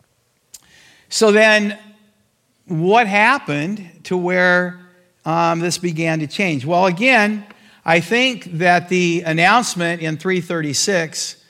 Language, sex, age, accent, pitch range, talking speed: English, male, 50-69, American, 145-180 Hz, 105 wpm